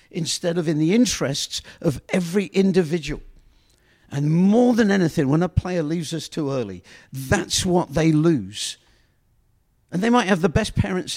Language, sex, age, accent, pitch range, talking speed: English, male, 50-69, British, 135-180 Hz, 160 wpm